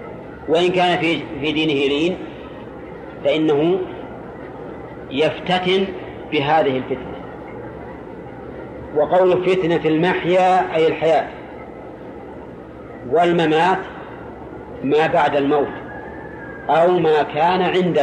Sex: male